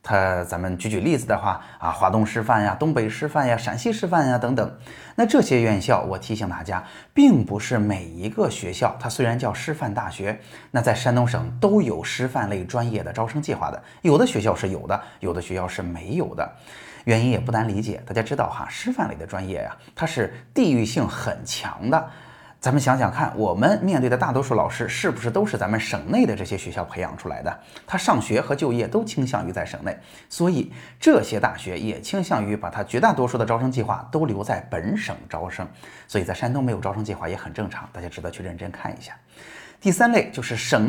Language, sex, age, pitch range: Chinese, male, 20-39, 95-130 Hz